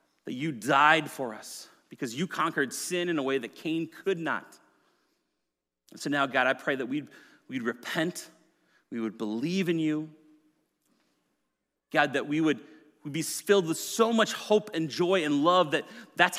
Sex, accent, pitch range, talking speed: male, American, 125-185 Hz, 175 wpm